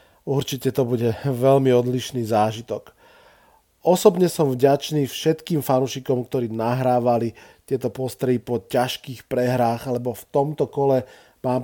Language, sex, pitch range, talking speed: Slovak, male, 120-145 Hz, 120 wpm